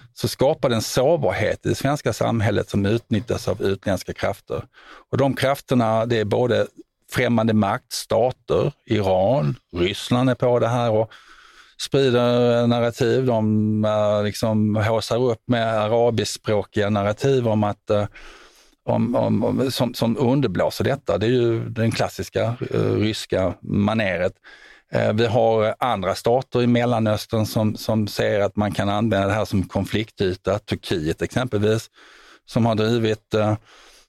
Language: Swedish